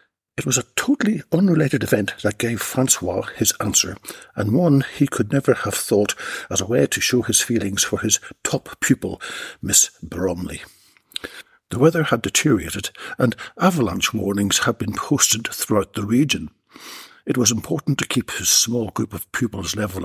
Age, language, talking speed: 60-79, English, 165 wpm